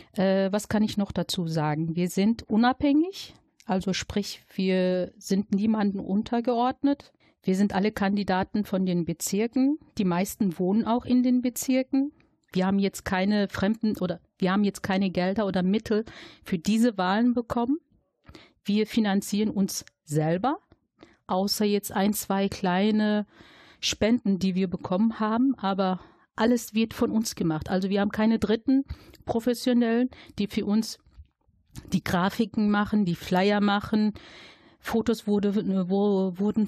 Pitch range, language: 190-225 Hz, German